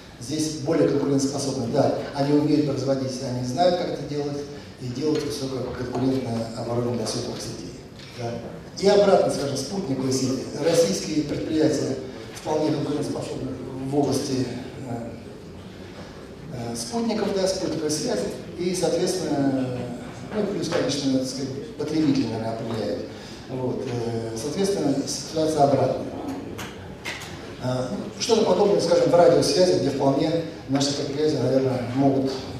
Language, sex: Russian, male